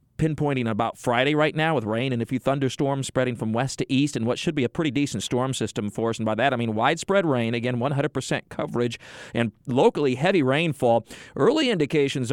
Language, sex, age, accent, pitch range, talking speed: English, male, 40-59, American, 120-145 Hz, 215 wpm